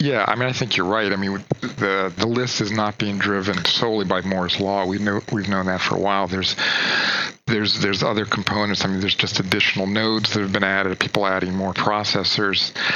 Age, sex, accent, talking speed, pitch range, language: 40-59, male, American, 220 wpm, 100-125 Hz, English